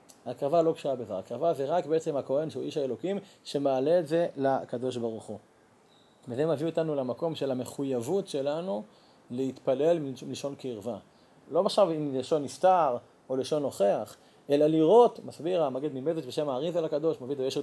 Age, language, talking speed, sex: 30-49, Hebrew, 160 wpm, male